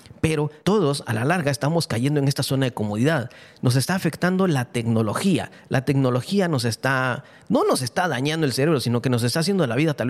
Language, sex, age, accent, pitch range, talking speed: English, male, 40-59, Mexican, 120-160 Hz, 210 wpm